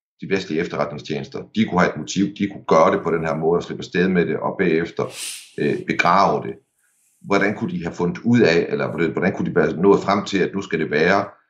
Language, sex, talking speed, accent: Danish, male, 240 wpm, native